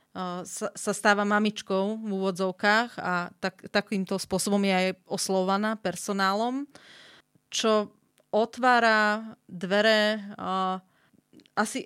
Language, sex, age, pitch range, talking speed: Slovak, female, 30-49, 190-215 Hz, 85 wpm